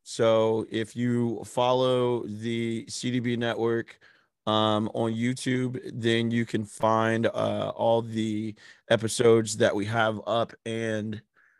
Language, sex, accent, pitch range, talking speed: English, male, American, 110-145 Hz, 120 wpm